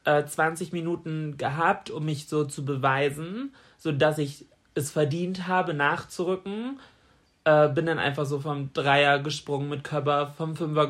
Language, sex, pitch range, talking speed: German, male, 150-180 Hz, 150 wpm